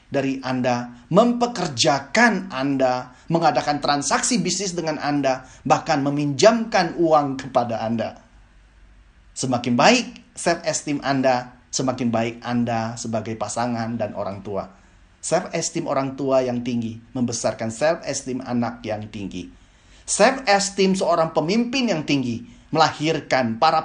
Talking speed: 110 wpm